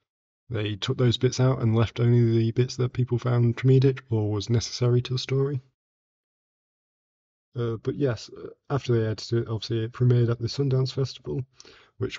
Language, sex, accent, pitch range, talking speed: English, male, British, 115-130 Hz, 170 wpm